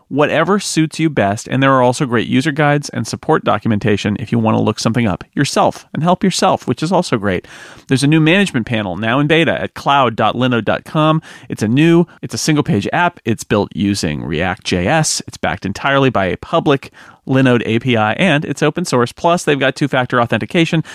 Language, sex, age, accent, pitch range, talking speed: English, male, 30-49, American, 110-150 Hz, 200 wpm